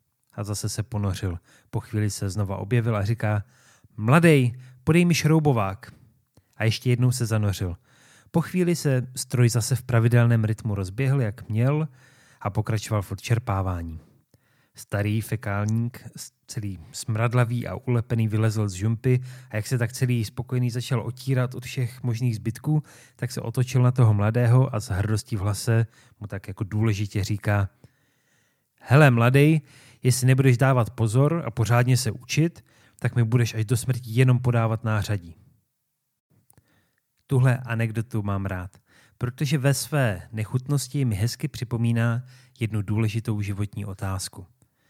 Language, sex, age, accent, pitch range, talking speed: Czech, male, 30-49, native, 110-130 Hz, 140 wpm